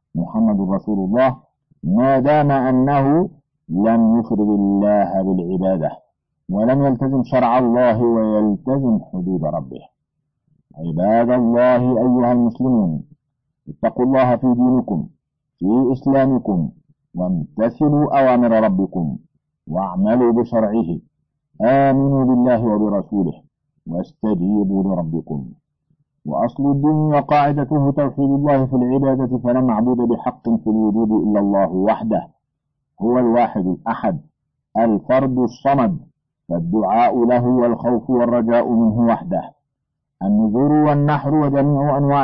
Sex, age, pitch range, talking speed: male, 50-69, 115-135 Hz, 95 wpm